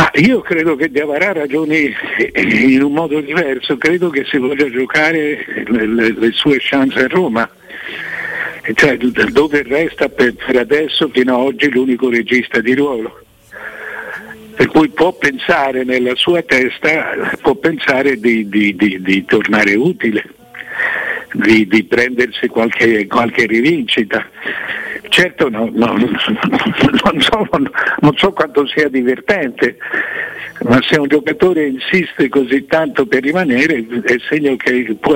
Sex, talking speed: male, 135 wpm